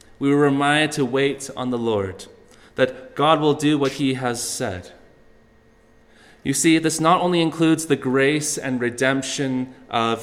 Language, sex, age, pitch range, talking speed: English, male, 30-49, 120-150 Hz, 160 wpm